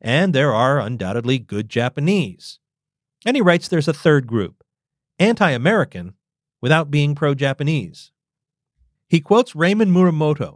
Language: English